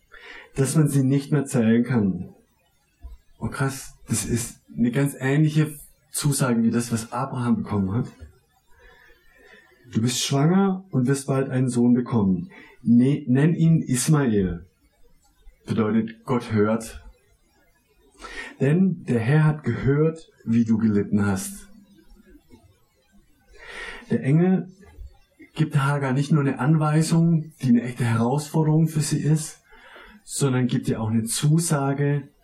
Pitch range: 115-155 Hz